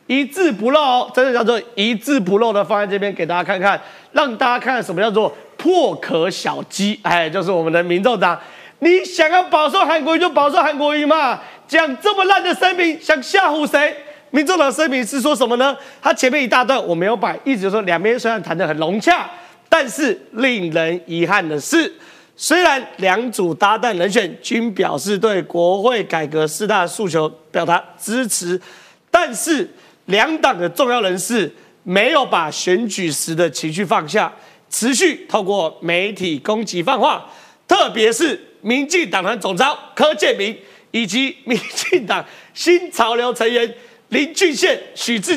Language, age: Chinese, 30-49